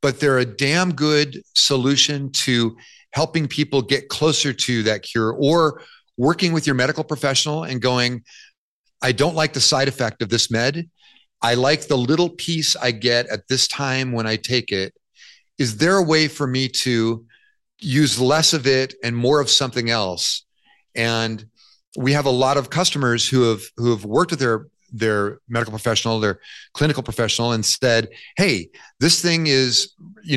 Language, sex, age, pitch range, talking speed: English, male, 40-59, 115-150 Hz, 170 wpm